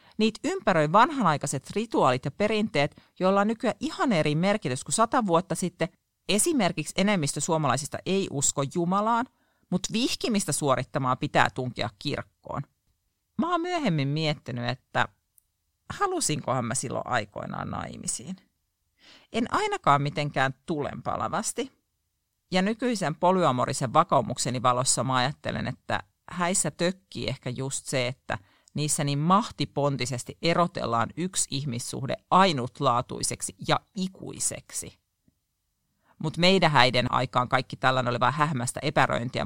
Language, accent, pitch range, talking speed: Finnish, native, 125-185 Hz, 115 wpm